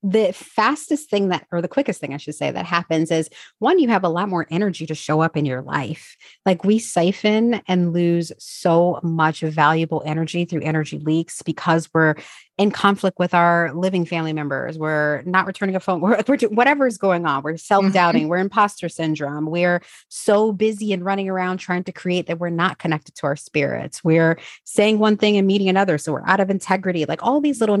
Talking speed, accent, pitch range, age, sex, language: 205 wpm, American, 155-190 Hz, 30-49, female, English